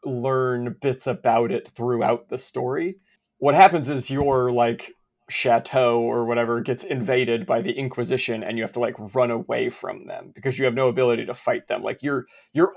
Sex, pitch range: male, 115-145 Hz